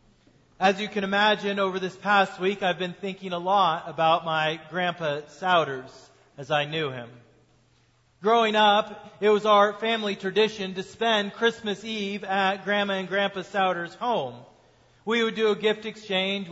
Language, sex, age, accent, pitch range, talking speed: English, male, 40-59, American, 160-210 Hz, 160 wpm